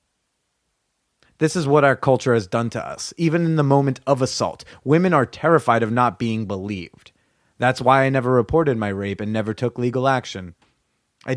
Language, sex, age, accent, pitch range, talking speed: English, male, 30-49, American, 115-160 Hz, 185 wpm